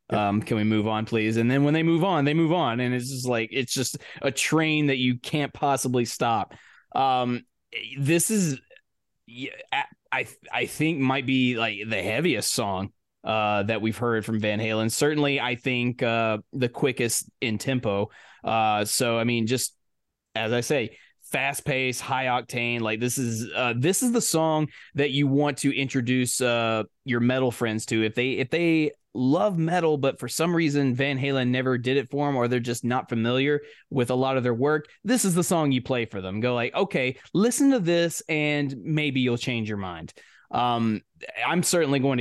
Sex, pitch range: male, 115-145 Hz